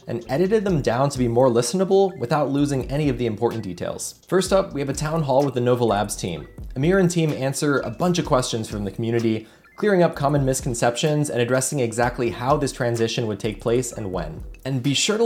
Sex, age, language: male, 20-39, English